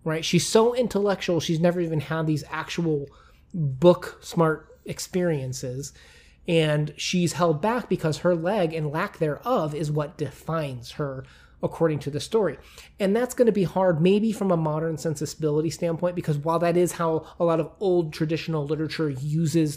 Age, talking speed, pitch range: 30-49, 165 wpm, 145-175 Hz